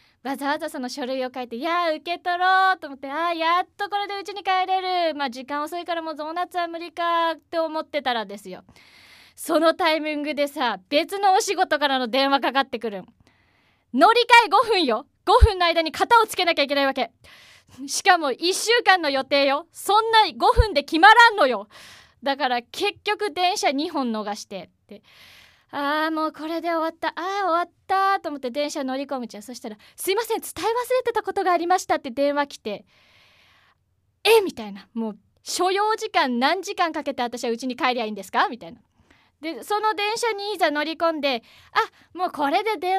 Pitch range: 260-370 Hz